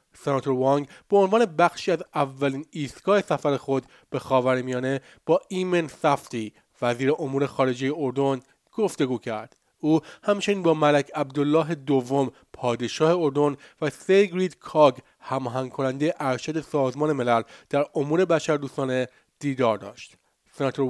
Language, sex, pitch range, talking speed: Persian, male, 130-160 Hz, 125 wpm